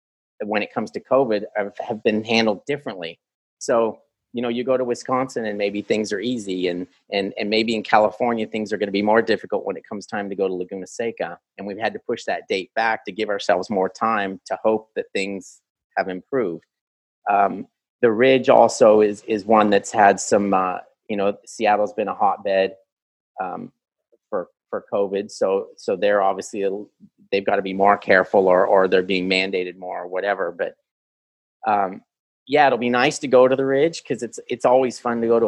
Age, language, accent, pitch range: 30-49, English, American, 100-120 Hz